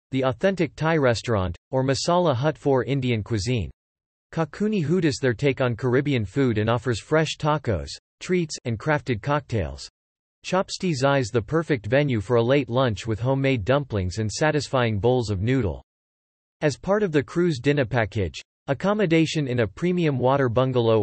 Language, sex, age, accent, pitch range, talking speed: English, male, 40-59, American, 115-150 Hz, 155 wpm